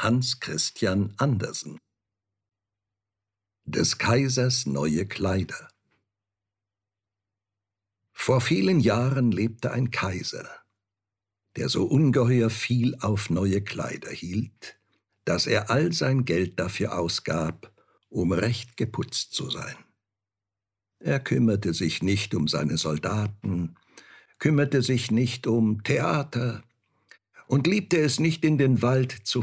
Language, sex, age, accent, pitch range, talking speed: German, male, 60-79, German, 100-125 Hz, 110 wpm